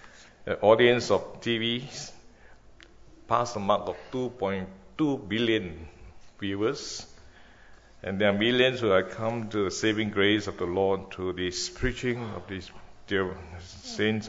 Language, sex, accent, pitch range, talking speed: English, male, Malaysian, 95-115 Hz, 135 wpm